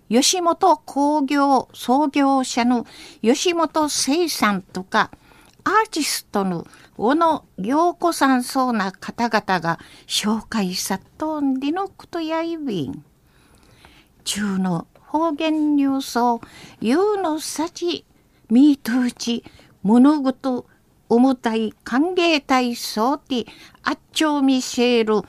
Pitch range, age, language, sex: 235-320 Hz, 50-69, Japanese, female